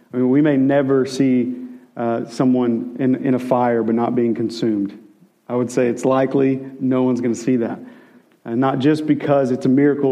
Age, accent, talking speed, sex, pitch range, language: 40-59, American, 200 wpm, male, 125-140 Hz, English